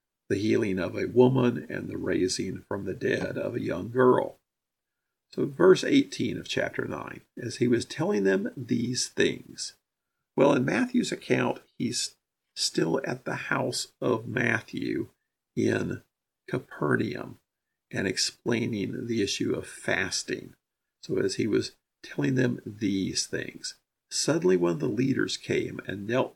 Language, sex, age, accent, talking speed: English, male, 50-69, American, 145 wpm